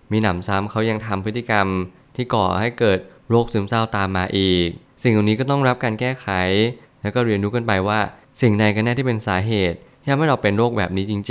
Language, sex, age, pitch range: Thai, male, 20-39, 100-125 Hz